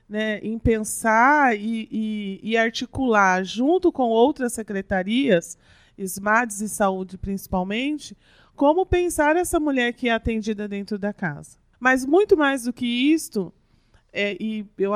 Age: 40-59